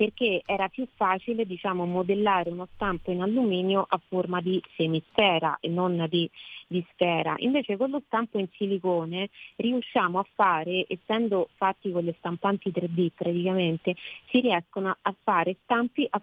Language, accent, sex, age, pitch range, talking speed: Italian, native, female, 30-49, 180-215 Hz, 150 wpm